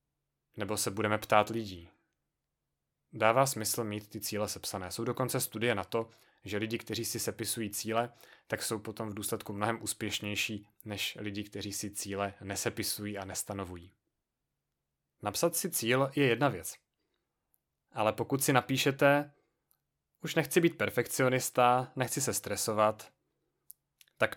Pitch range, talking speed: 105-125 Hz, 135 wpm